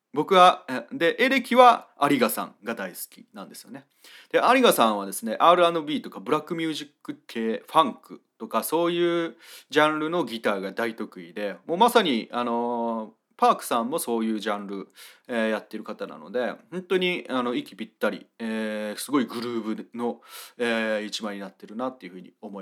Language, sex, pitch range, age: Japanese, male, 105-155 Hz, 30-49